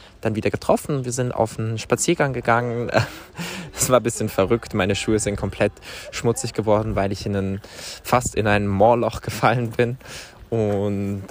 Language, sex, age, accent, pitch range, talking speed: German, male, 20-39, German, 100-120 Hz, 165 wpm